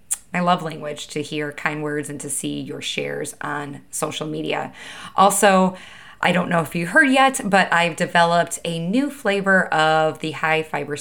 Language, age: English, 20-39